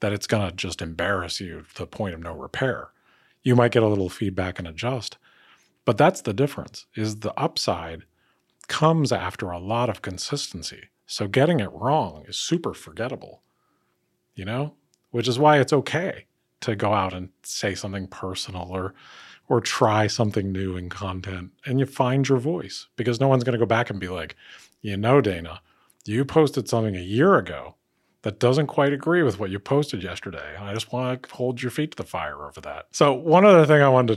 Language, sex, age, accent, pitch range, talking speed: English, male, 40-59, American, 90-125 Hz, 200 wpm